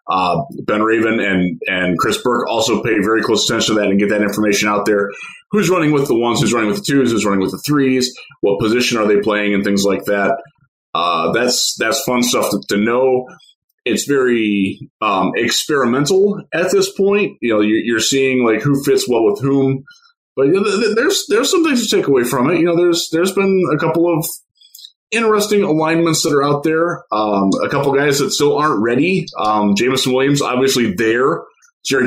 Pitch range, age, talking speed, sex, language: 105-160 Hz, 20-39, 205 wpm, male, English